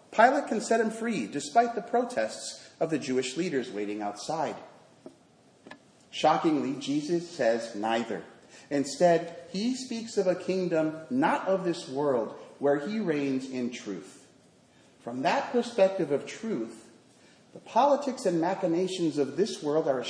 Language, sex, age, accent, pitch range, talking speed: English, male, 40-59, American, 130-195 Hz, 140 wpm